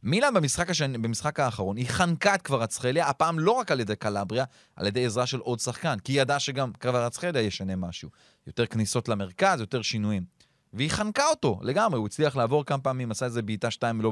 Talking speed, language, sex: 210 wpm, Hebrew, male